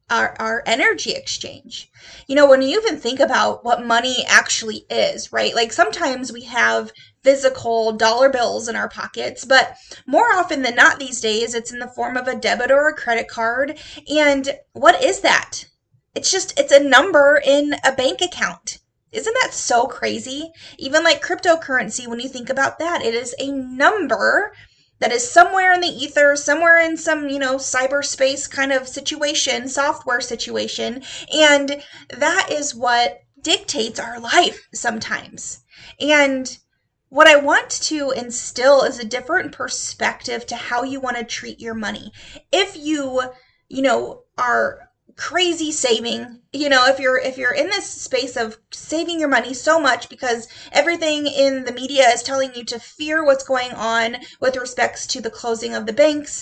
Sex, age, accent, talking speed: female, 20-39, American, 170 wpm